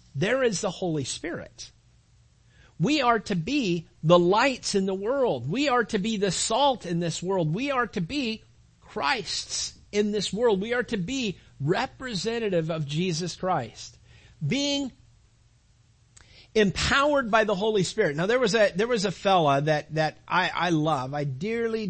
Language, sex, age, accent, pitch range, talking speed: English, male, 50-69, American, 130-200 Hz, 165 wpm